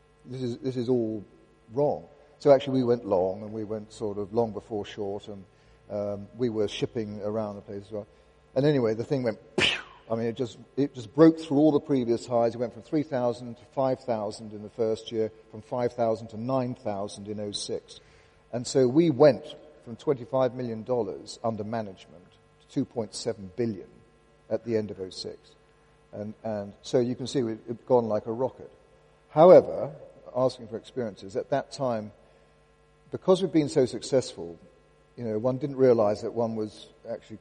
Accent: British